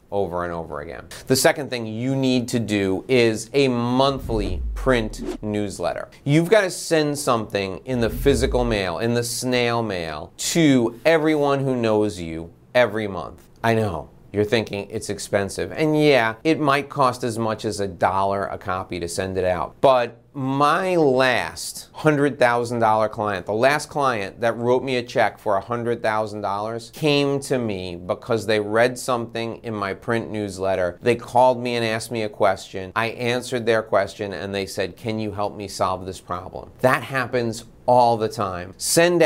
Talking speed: 170 wpm